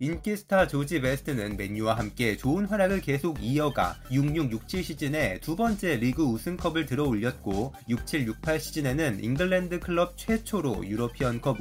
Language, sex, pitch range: Korean, male, 115-170 Hz